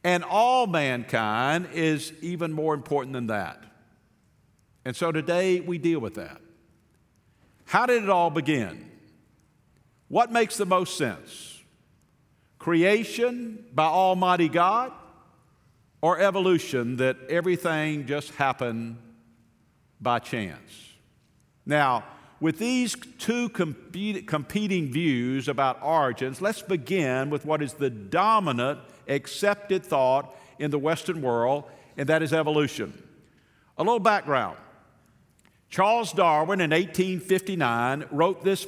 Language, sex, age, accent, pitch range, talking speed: English, male, 50-69, American, 140-185 Hz, 110 wpm